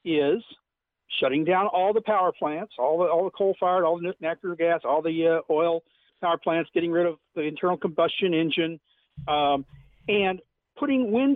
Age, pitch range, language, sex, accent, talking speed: 50-69, 175-260 Hz, English, male, American, 180 wpm